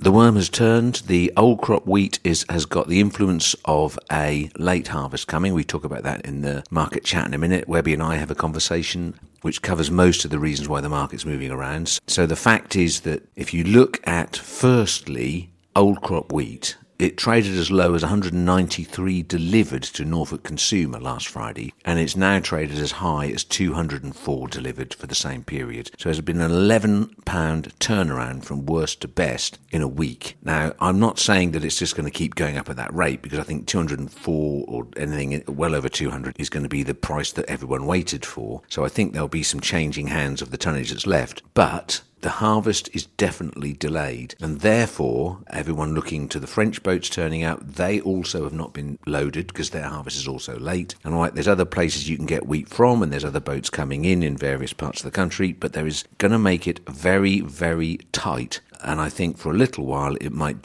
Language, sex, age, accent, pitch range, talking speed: English, male, 50-69, British, 75-90 Hz, 210 wpm